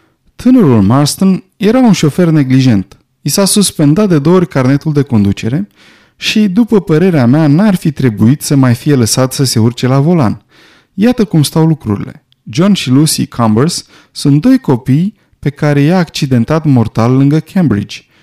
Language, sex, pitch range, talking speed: Romanian, male, 125-170 Hz, 160 wpm